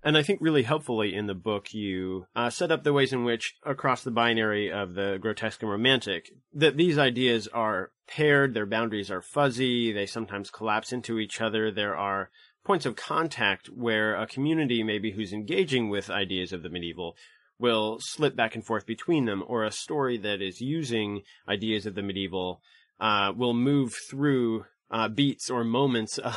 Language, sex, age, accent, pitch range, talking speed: English, male, 30-49, American, 100-130 Hz, 180 wpm